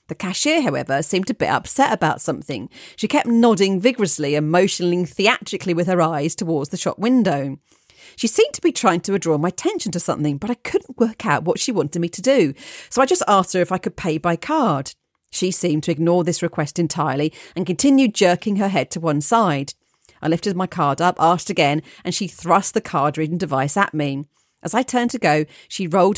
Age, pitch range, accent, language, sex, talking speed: 40-59, 155-220 Hz, British, English, female, 215 wpm